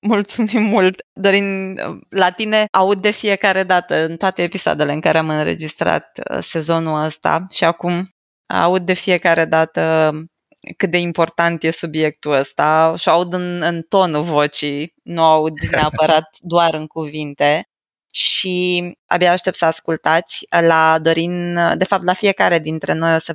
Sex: female